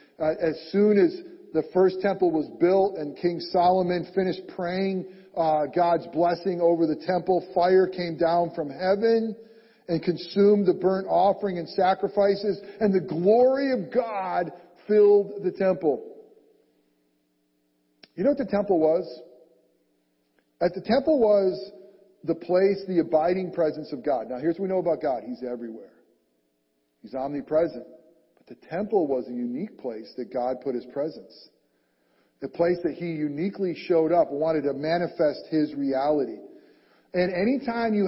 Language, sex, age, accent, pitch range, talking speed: English, male, 40-59, American, 155-195 Hz, 150 wpm